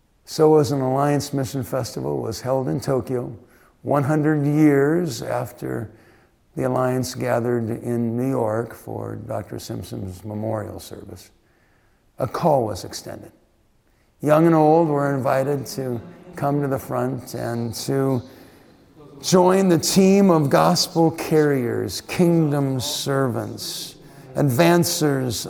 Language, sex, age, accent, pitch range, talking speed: English, male, 60-79, American, 110-155 Hz, 115 wpm